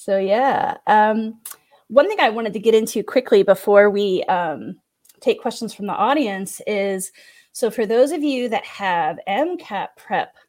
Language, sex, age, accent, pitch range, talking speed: English, female, 30-49, American, 195-250 Hz, 165 wpm